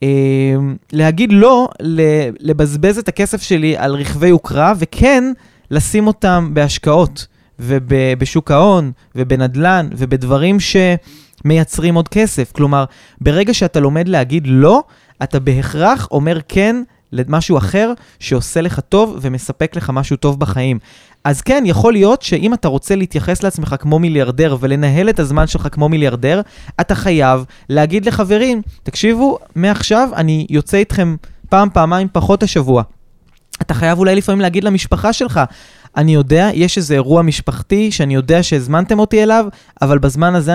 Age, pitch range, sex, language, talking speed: 20-39, 140-200 Hz, male, Hebrew, 135 wpm